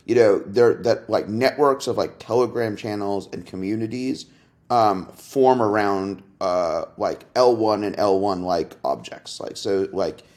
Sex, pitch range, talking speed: male, 100-130 Hz, 135 wpm